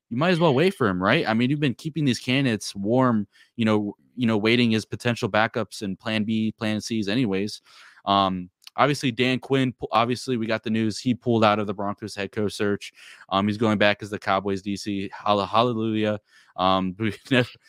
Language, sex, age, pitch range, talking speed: English, male, 20-39, 100-120 Hz, 195 wpm